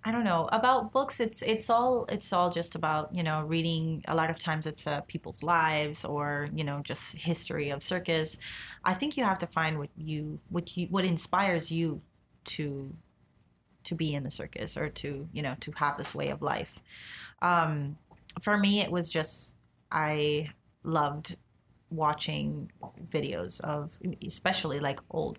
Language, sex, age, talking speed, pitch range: English, female, 30-49, 175 wpm, 150-170 Hz